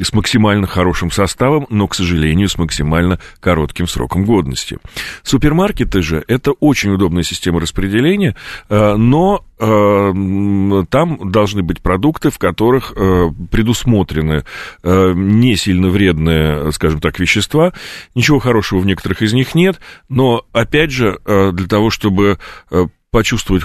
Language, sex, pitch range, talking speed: Russian, male, 85-105 Hz, 135 wpm